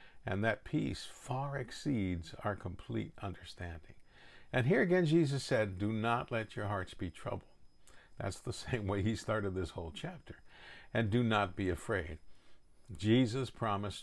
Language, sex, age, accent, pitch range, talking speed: English, male, 50-69, American, 85-110 Hz, 155 wpm